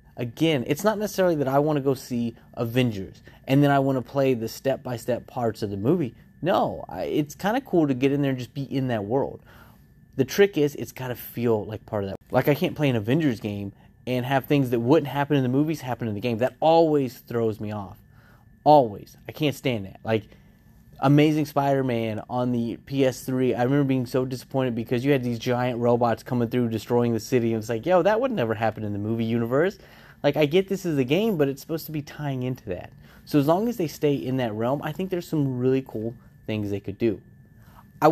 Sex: male